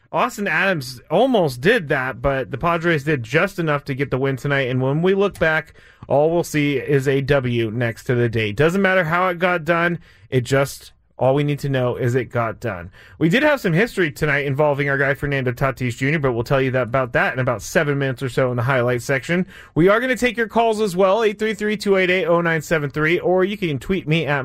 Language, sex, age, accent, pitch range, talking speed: English, male, 30-49, American, 135-175 Hz, 225 wpm